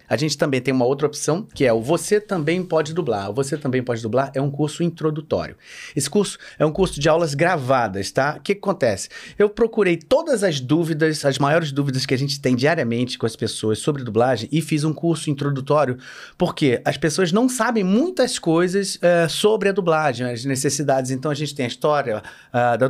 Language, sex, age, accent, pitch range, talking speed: Portuguese, male, 30-49, Brazilian, 115-155 Hz, 200 wpm